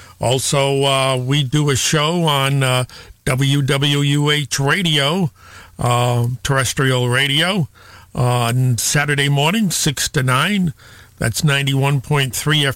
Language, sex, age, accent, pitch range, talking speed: English, male, 50-69, American, 125-155 Hz, 105 wpm